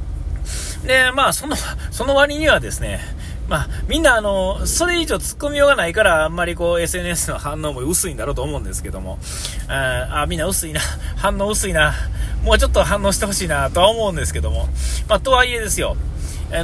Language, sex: Japanese, male